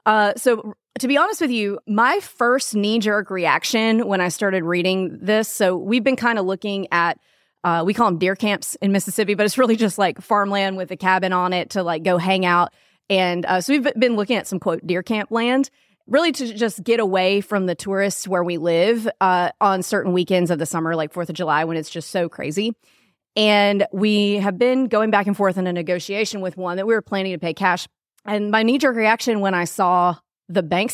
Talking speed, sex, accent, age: 225 wpm, female, American, 30-49